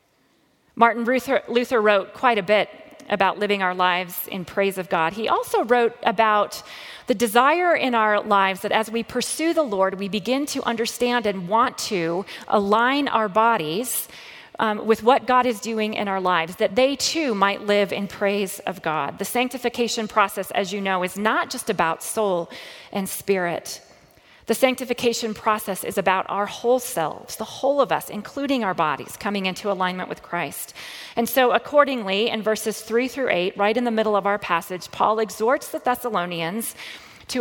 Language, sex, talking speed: English, female, 180 wpm